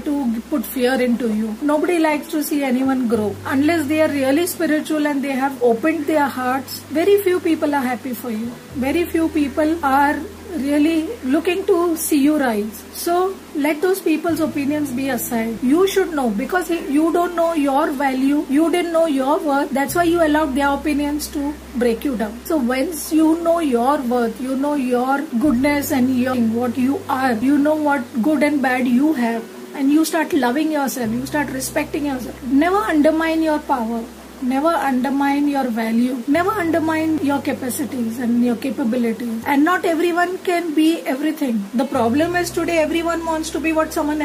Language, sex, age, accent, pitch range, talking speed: English, female, 40-59, Indian, 255-315 Hz, 180 wpm